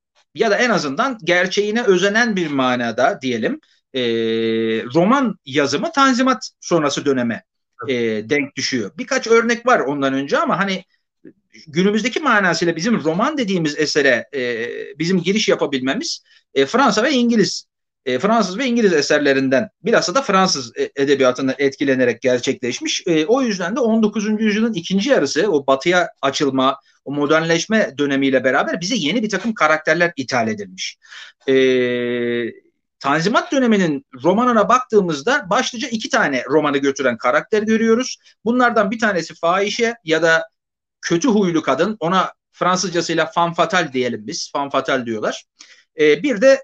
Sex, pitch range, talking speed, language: male, 140-230 Hz, 130 wpm, Turkish